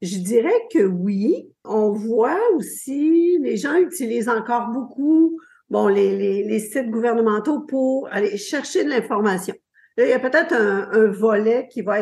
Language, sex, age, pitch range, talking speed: French, female, 50-69, 200-255 Hz, 165 wpm